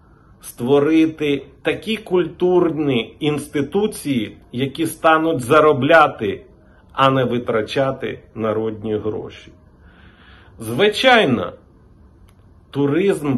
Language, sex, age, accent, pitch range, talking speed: Ukrainian, male, 40-59, native, 110-160 Hz, 65 wpm